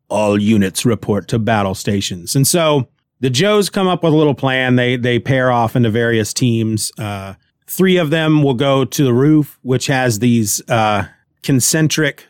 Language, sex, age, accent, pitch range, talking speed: English, male, 40-59, American, 115-155 Hz, 180 wpm